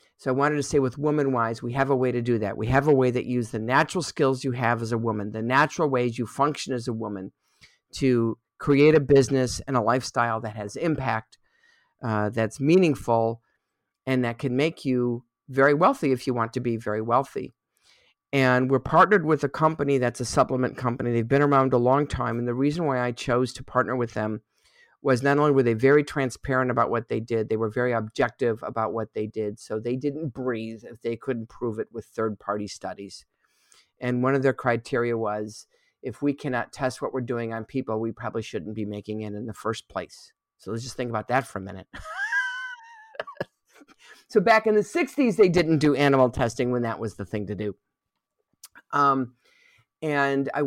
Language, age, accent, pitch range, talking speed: English, 50-69, American, 115-140 Hz, 205 wpm